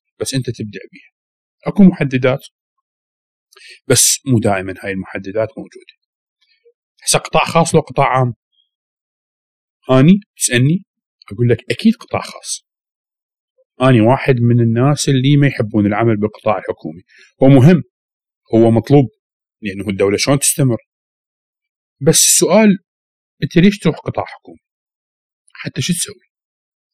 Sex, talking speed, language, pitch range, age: male, 120 wpm, Arabic, 115-165 Hz, 40-59